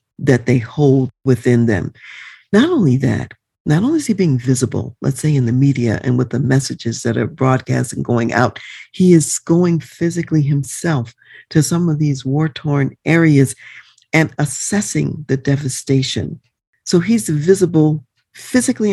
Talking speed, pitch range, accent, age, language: 150 wpm, 125-160 Hz, American, 50-69, English